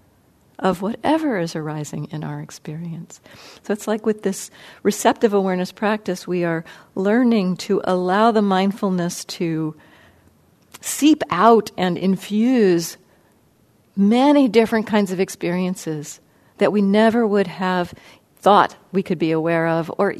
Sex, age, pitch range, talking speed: female, 50-69, 170-215 Hz, 130 wpm